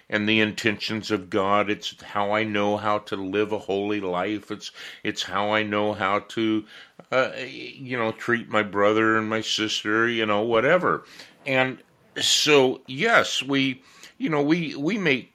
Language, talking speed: English, 170 wpm